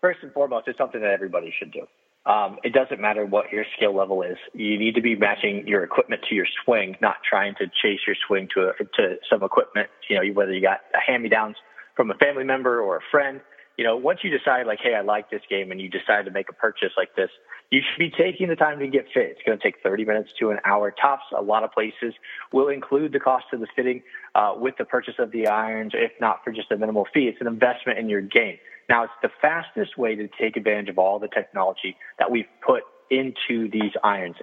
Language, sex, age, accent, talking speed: English, male, 30-49, American, 250 wpm